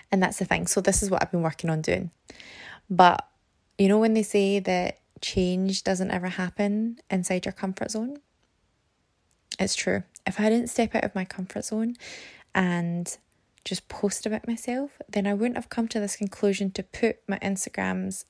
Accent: British